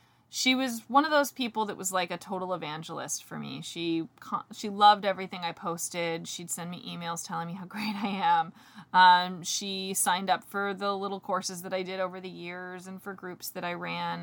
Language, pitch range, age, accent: English, 175-220 Hz, 20-39, American